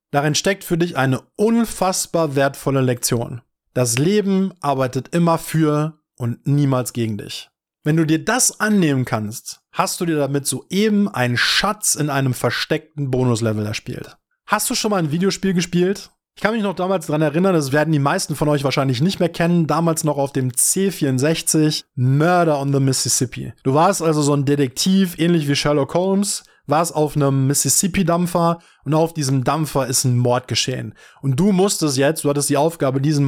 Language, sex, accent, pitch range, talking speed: German, male, German, 135-185 Hz, 180 wpm